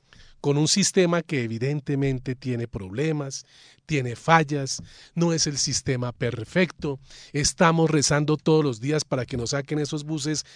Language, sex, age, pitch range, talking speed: Spanish, male, 40-59, 130-160 Hz, 140 wpm